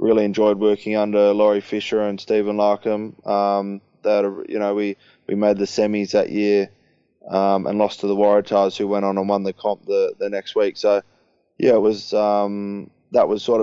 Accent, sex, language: Australian, male, English